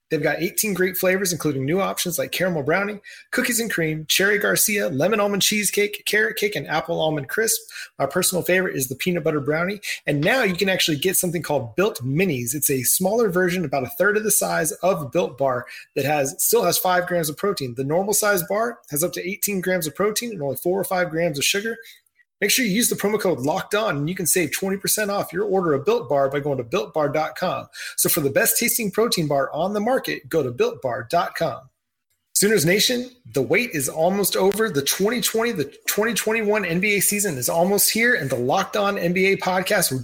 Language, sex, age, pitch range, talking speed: English, male, 30-49, 155-210 Hz, 215 wpm